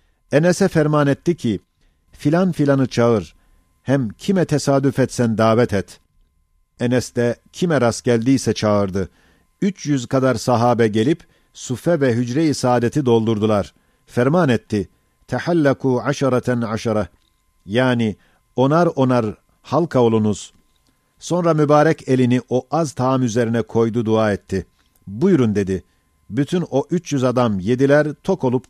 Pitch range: 105-145 Hz